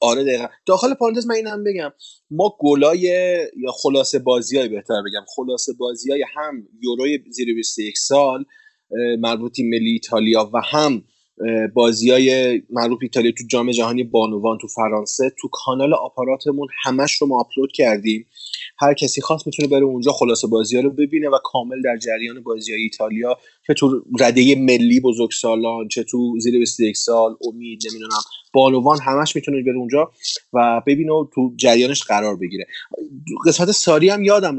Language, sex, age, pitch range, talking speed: Persian, male, 30-49, 115-145 Hz, 155 wpm